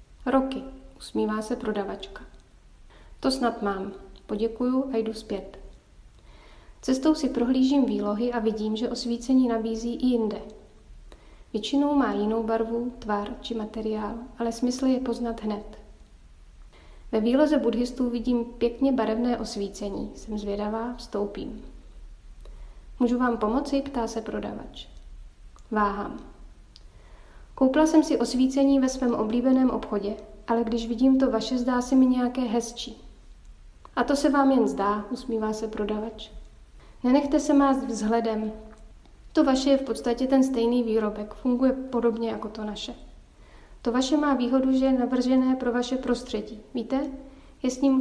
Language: Czech